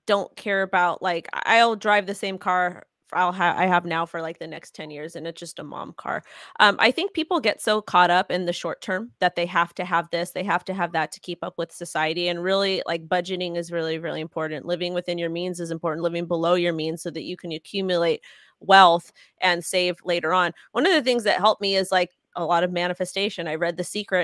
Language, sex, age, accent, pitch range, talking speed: English, female, 20-39, American, 175-210 Hz, 250 wpm